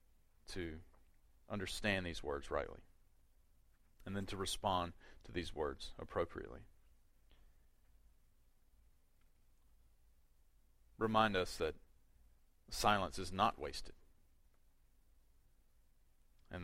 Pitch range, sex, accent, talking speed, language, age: 75-115 Hz, male, American, 75 wpm, English, 40-59